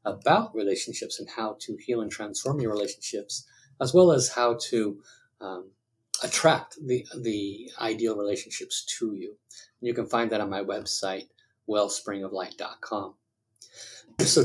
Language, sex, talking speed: English, male, 135 wpm